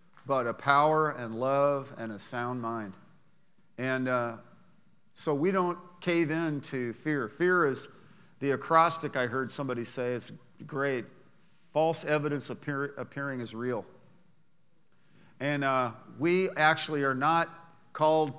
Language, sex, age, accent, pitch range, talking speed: English, male, 50-69, American, 140-175 Hz, 130 wpm